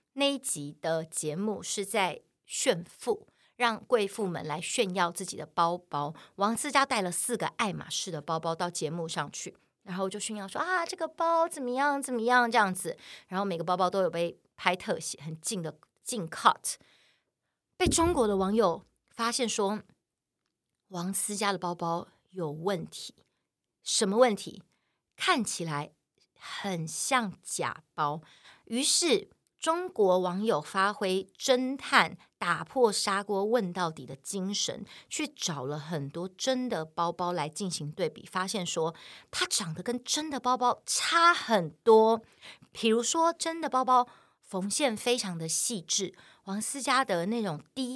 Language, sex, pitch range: Chinese, female, 170-255 Hz